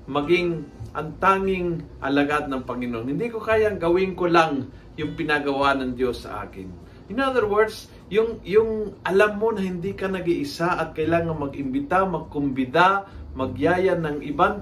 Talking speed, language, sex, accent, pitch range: 150 wpm, Filipino, male, native, 135-190 Hz